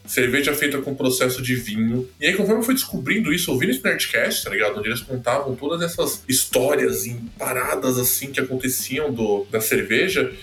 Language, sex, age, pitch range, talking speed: Portuguese, male, 20-39, 120-200 Hz, 180 wpm